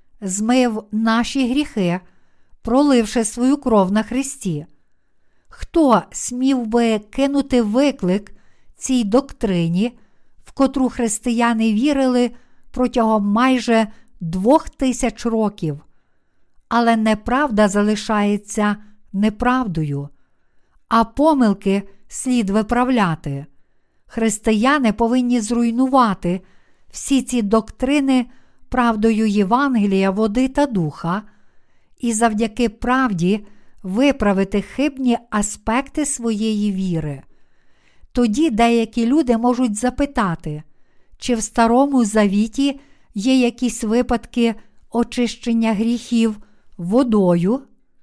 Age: 50-69